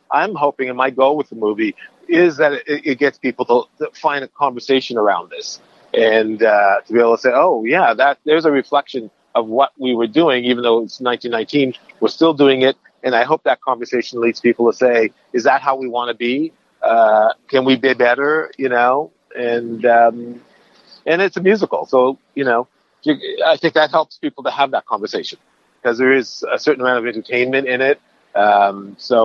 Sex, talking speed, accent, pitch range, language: male, 205 wpm, American, 120-145 Hz, English